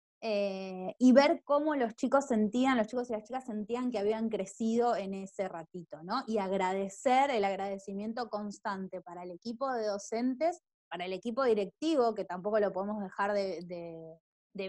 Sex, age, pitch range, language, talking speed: female, 20-39, 200-260 Hz, Spanish, 170 wpm